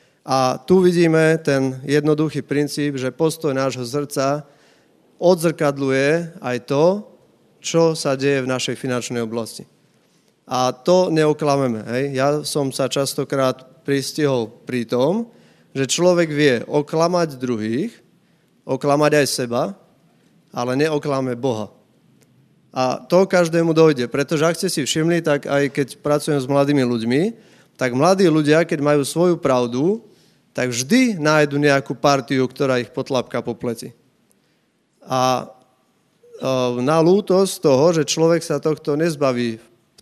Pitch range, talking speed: 130-165 Hz, 125 wpm